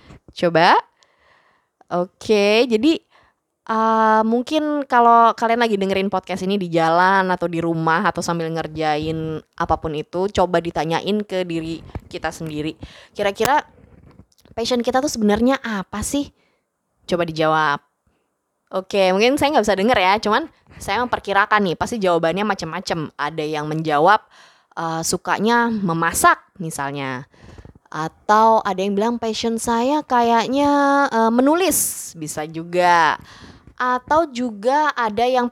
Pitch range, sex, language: 170-240 Hz, female, Indonesian